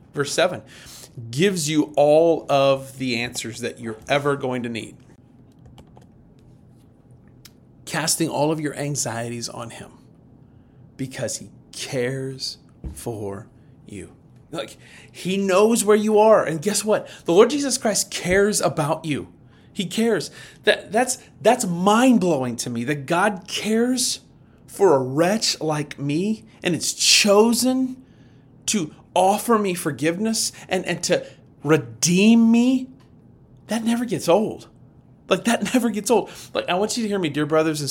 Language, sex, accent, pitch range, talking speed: English, male, American, 130-205 Hz, 140 wpm